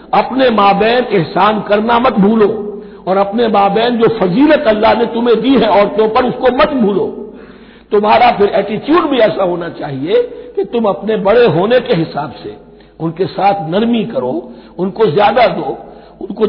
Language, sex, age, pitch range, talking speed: Hindi, male, 60-79, 185-230 Hz, 165 wpm